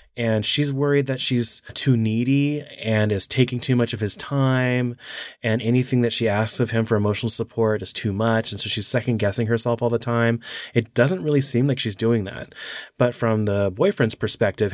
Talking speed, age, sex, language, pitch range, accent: 205 wpm, 20-39, male, English, 105-125 Hz, American